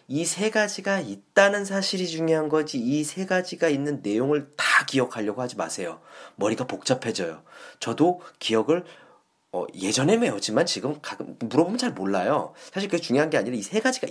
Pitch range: 145-240 Hz